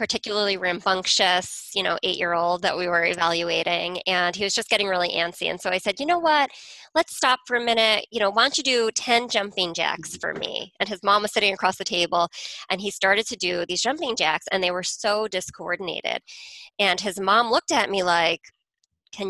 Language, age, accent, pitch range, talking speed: English, 20-39, American, 175-220 Hz, 220 wpm